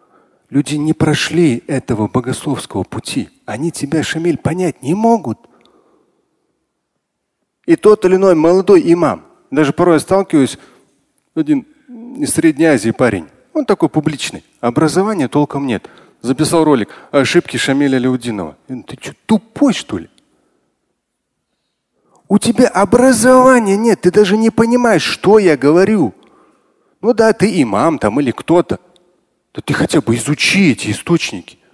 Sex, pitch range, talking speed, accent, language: male, 140-215 Hz, 130 wpm, native, Russian